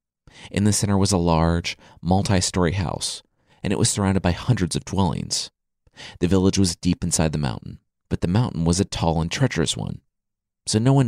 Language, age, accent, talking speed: English, 30-49, American, 190 wpm